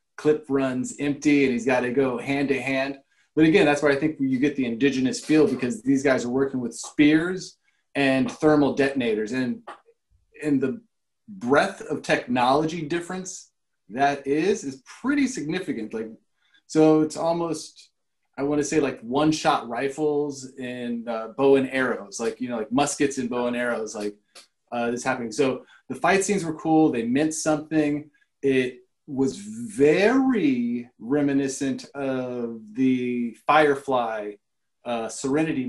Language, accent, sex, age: English, American, male, 20-39